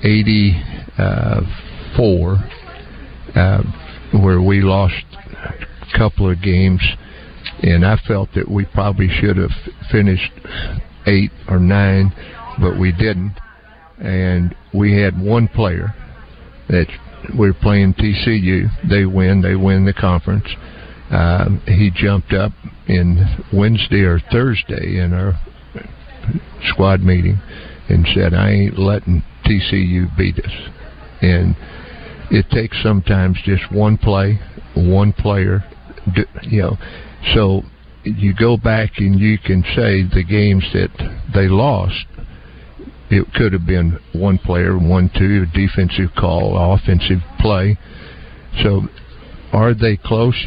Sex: male